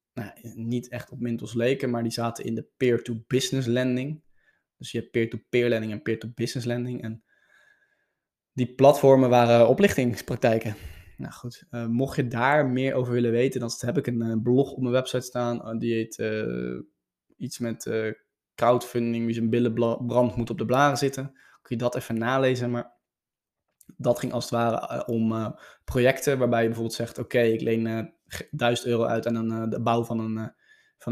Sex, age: male, 20-39